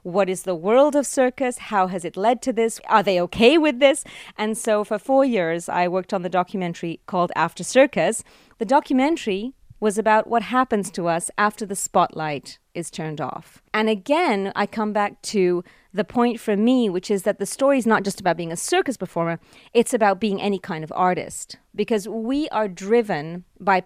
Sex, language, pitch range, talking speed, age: female, English, 185-245 Hz, 200 wpm, 30-49